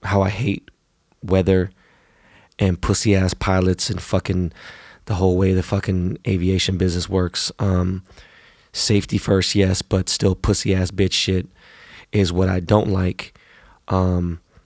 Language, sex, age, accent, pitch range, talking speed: English, male, 20-39, American, 95-105 Hz, 140 wpm